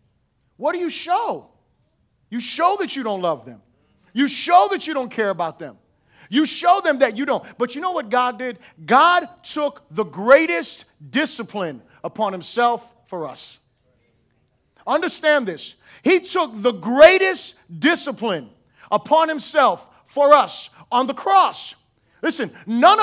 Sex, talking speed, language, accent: male, 145 wpm, English, American